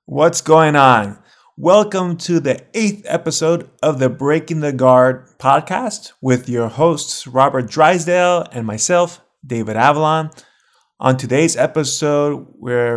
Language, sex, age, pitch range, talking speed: English, male, 20-39, 125-160 Hz, 125 wpm